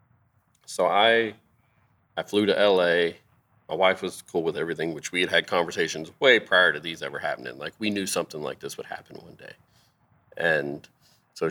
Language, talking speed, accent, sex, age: English, 180 wpm, American, male, 40-59